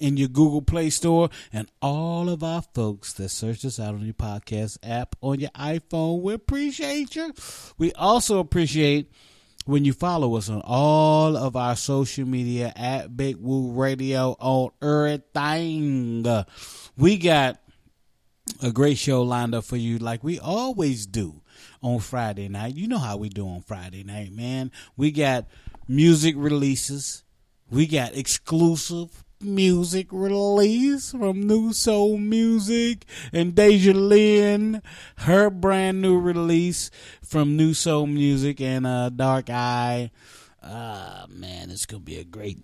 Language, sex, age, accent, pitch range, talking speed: English, male, 30-49, American, 120-170 Hz, 150 wpm